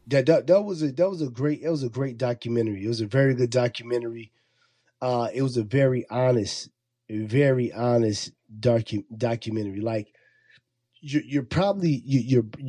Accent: American